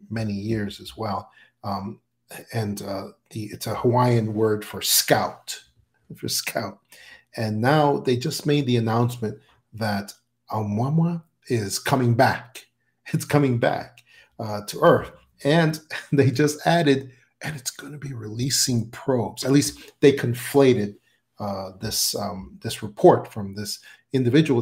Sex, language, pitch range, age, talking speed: male, English, 110-140 Hz, 40-59, 140 wpm